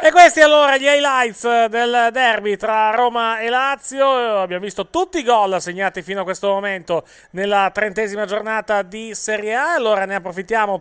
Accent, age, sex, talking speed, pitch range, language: native, 30-49, male, 165 wpm, 185-245 Hz, Italian